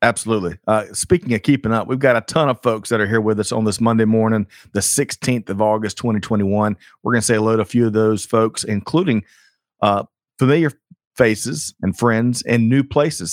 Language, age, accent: English, 40-59, American